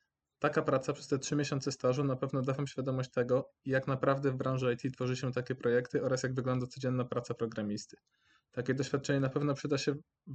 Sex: male